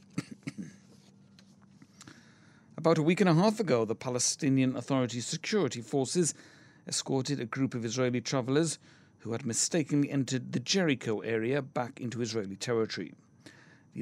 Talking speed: 130 wpm